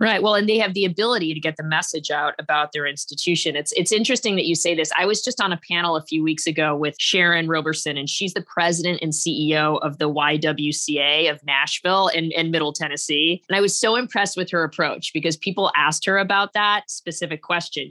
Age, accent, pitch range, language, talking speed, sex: 20-39, American, 160-195 Hz, English, 220 wpm, female